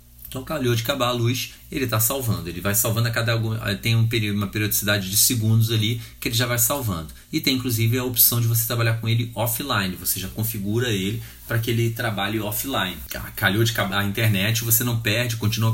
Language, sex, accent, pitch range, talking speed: Portuguese, male, Brazilian, 100-115 Hz, 205 wpm